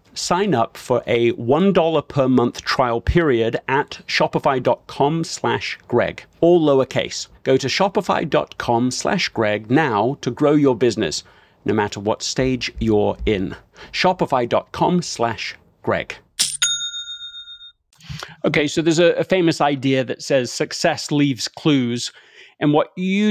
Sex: male